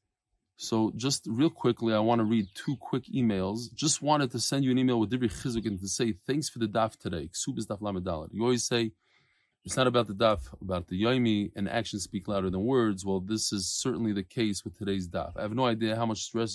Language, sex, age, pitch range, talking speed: English, male, 20-39, 100-125 Hz, 220 wpm